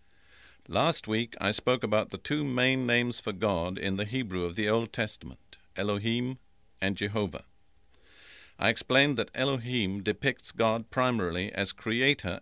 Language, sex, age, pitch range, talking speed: English, male, 50-69, 95-125 Hz, 145 wpm